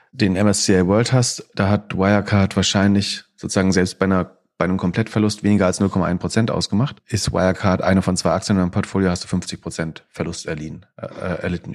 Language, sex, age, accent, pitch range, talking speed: German, male, 40-59, German, 95-110 Hz, 170 wpm